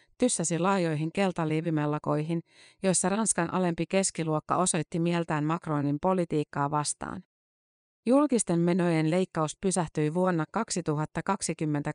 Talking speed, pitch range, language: 90 wpm, 155-185 Hz, Finnish